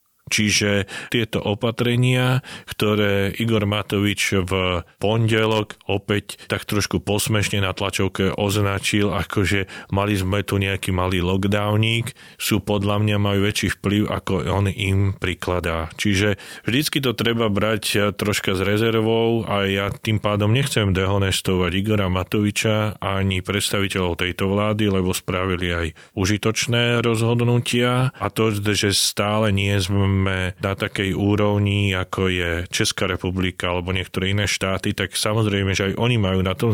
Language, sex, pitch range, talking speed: Slovak, male, 95-110 Hz, 135 wpm